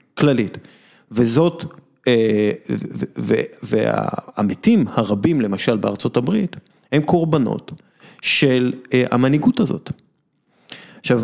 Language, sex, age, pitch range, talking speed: Hebrew, male, 50-69, 120-160 Hz, 80 wpm